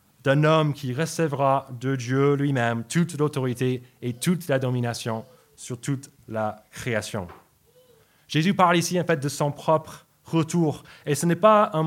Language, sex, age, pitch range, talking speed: French, male, 20-39, 110-145 Hz, 155 wpm